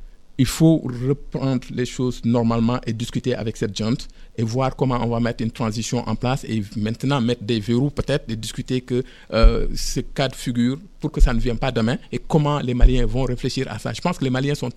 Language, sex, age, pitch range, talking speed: French, male, 50-69, 120-150 Hz, 225 wpm